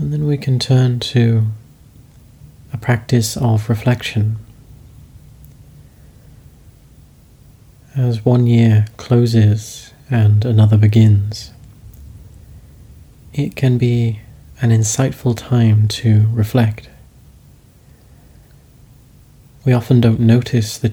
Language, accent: English, British